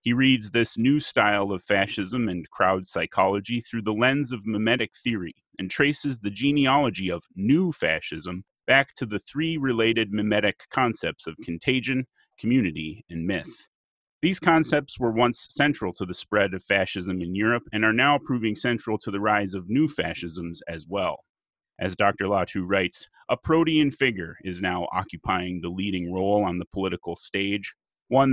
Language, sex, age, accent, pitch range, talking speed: English, male, 30-49, American, 95-125 Hz, 165 wpm